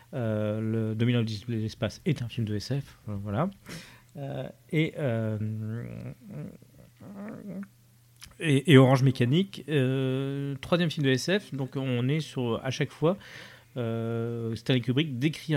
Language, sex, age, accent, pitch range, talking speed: French, male, 40-59, French, 110-135 Hz, 135 wpm